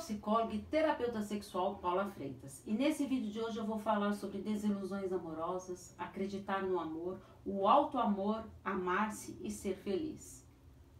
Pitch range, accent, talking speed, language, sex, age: 185-225 Hz, Brazilian, 140 wpm, Portuguese, female, 40-59